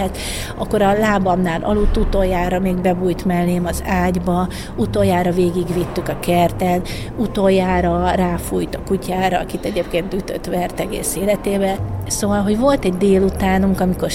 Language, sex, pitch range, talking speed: Hungarian, female, 175-190 Hz, 130 wpm